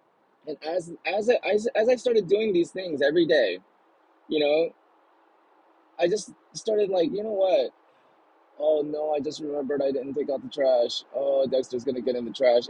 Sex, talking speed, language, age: male, 195 wpm, English, 20-39